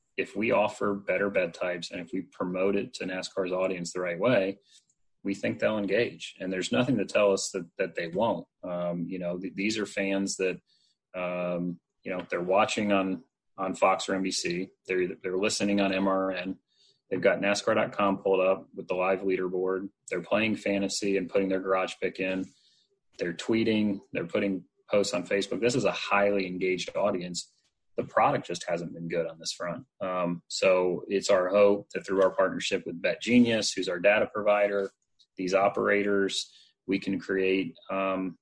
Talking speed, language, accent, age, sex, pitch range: 180 wpm, English, American, 30-49, male, 90-100 Hz